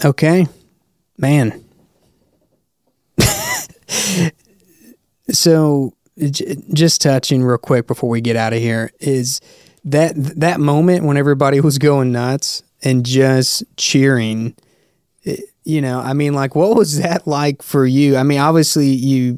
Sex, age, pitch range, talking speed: male, 20-39, 130-160 Hz, 125 wpm